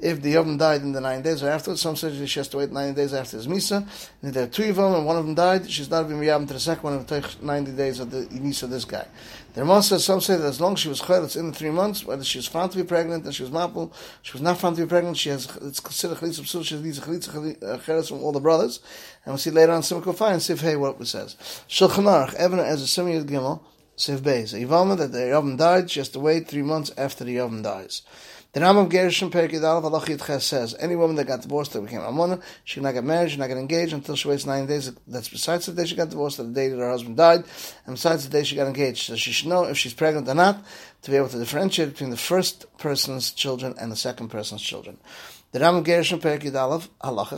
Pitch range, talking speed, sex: 140-170 Hz, 260 wpm, male